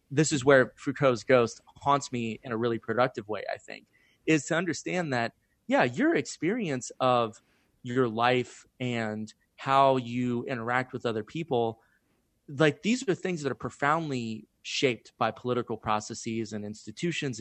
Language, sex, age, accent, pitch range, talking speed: English, male, 30-49, American, 115-140 Hz, 155 wpm